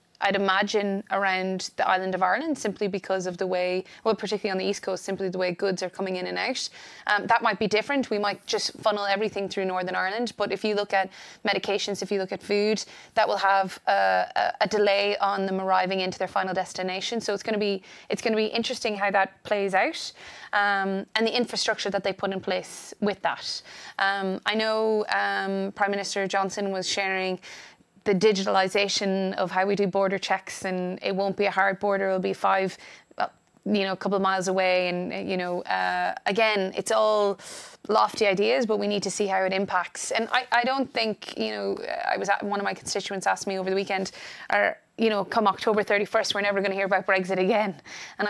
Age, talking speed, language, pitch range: 20-39, 210 wpm, Polish, 190-210 Hz